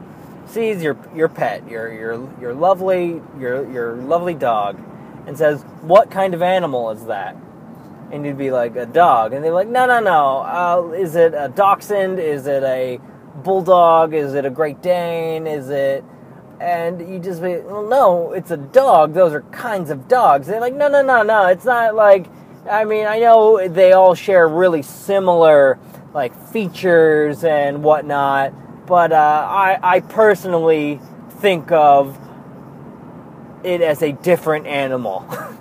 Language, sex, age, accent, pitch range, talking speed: English, male, 20-39, American, 140-190 Hz, 165 wpm